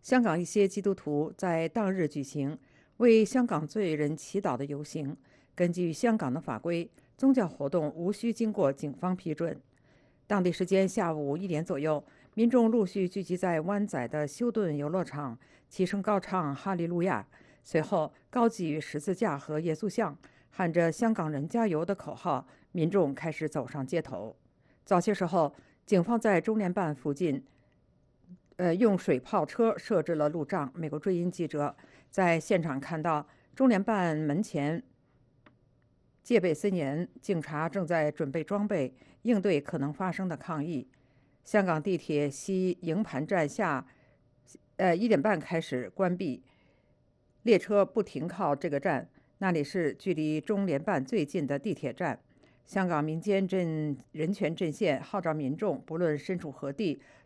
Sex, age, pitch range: female, 50-69, 150-200 Hz